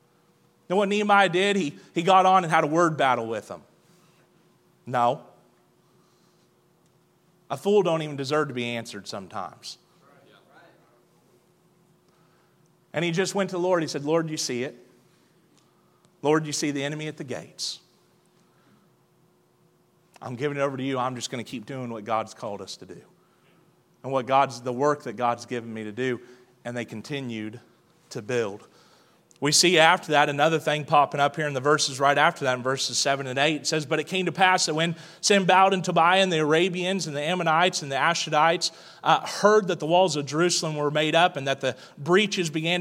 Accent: American